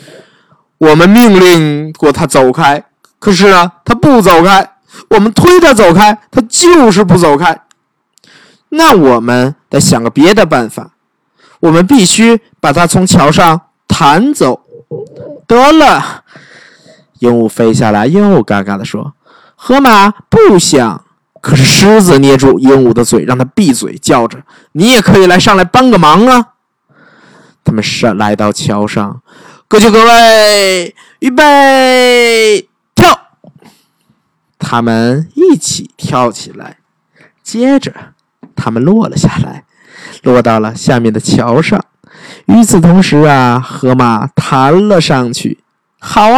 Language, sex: Chinese, male